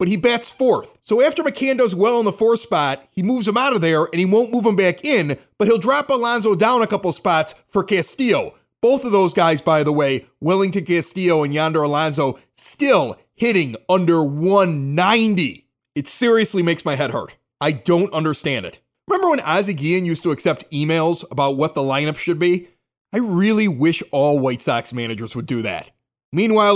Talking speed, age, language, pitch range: 195 wpm, 30-49, English, 155-205 Hz